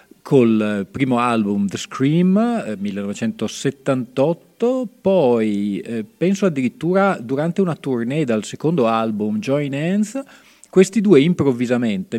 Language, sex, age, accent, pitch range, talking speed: Italian, male, 40-59, native, 115-185 Hz, 110 wpm